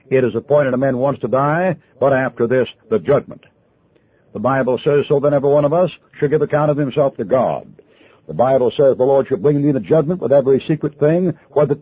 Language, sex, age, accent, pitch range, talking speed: English, male, 60-79, American, 135-160 Hz, 230 wpm